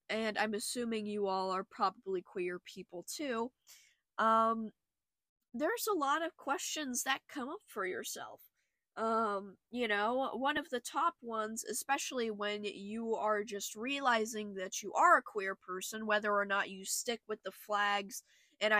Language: English